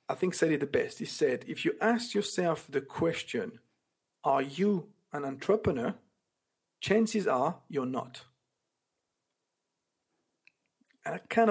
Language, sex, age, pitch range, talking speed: English, male, 50-69, 155-210 Hz, 130 wpm